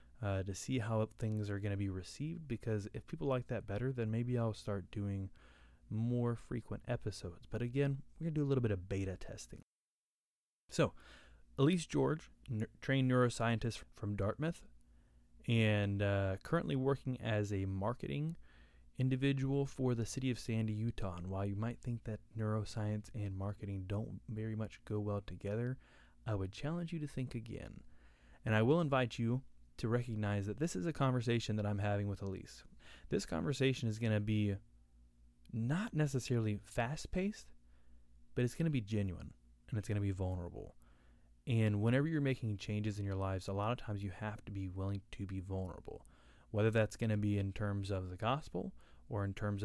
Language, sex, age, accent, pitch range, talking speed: English, male, 20-39, American, 95-120 Hz, 180 wpm